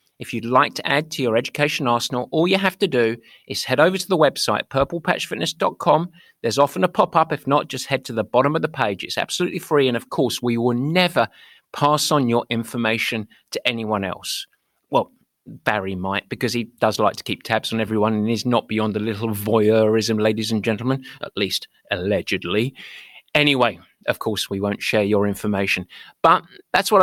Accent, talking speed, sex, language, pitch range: British, 195 wpm, male, English, 110-155 Hz